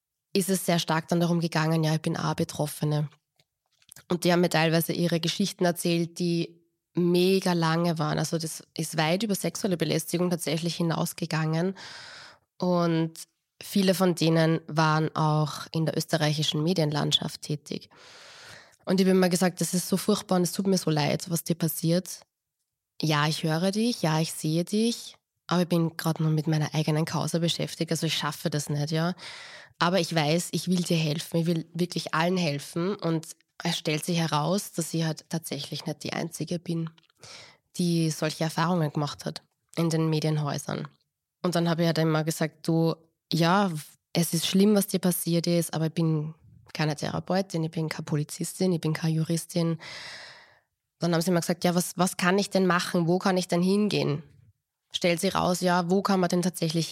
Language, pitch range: German, 155-180 Hz